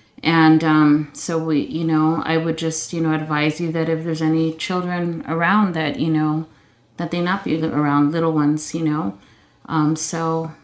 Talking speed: 185 wpm